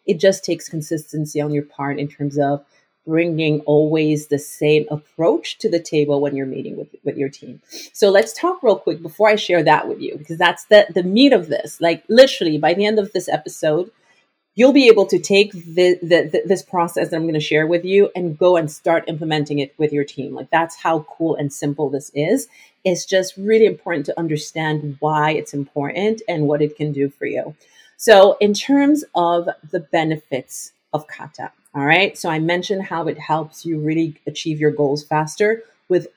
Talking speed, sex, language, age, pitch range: 205 wpm, female, English, 30-49, 150-190 Hz